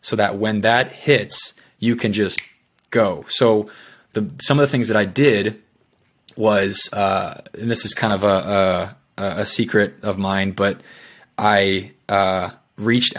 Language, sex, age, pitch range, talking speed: English, male, 20-39, 100-115 Hz, 160 wpm